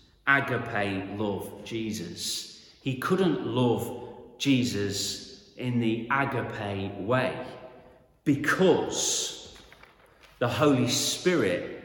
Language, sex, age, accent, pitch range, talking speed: English, male, 40-59, British, 105-135 Hz, 75 wpm